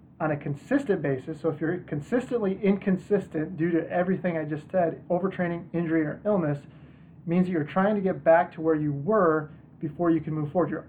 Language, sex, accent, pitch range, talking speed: English, male, American, 145-170 Hz, 200 wpm